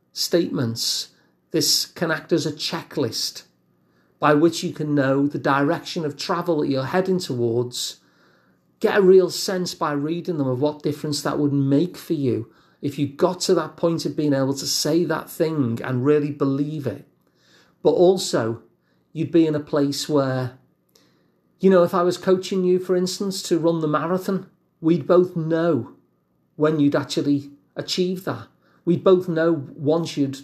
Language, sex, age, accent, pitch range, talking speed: English, male, 40-59, British, 140-180 Hz, 170 wpm